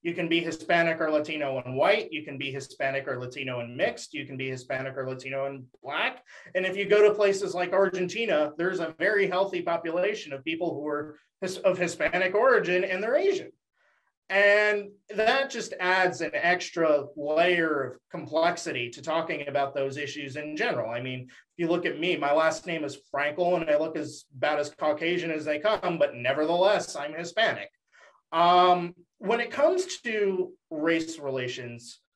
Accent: American